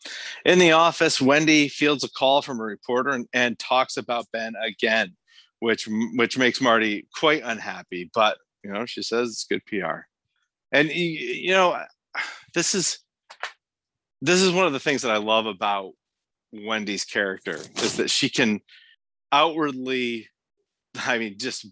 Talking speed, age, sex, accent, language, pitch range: 150 wpm, 40-59, male, American, English, 110-160 Hz